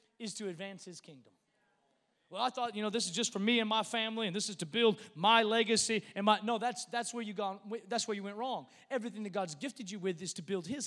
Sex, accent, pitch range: male, American, 205-260 Hz